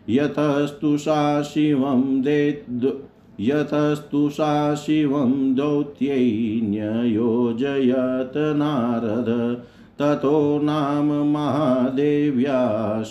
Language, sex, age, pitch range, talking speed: Hindi, male, 50-69, 120-150 Hz, 45 wpm